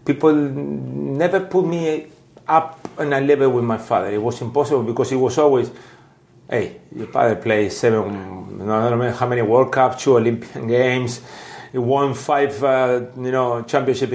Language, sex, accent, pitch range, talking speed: English, male, Spanish, 115-135 Hz, 170 wpm